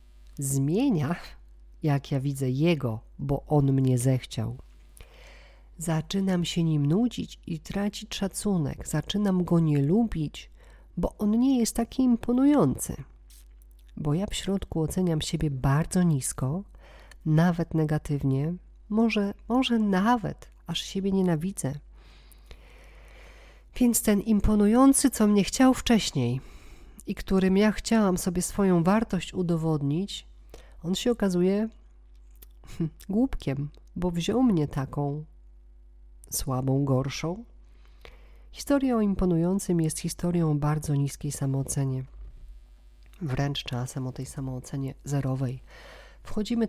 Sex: female